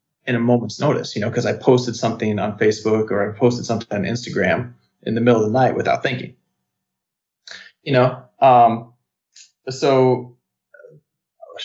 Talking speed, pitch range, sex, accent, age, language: 160 wpm, 115-135 Hz, male, American, 20-39, English